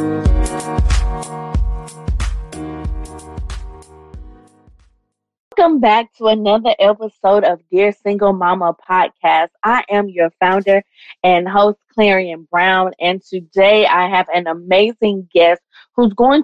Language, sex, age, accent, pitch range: English, female, 20-39, American, 160-205 Hz